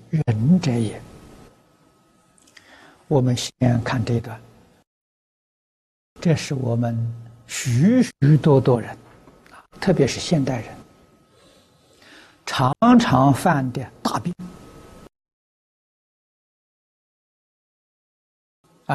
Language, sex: Chinese, male